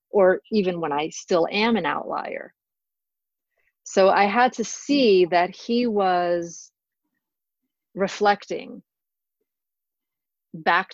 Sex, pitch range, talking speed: female, 170-205 Hz, 100 wpm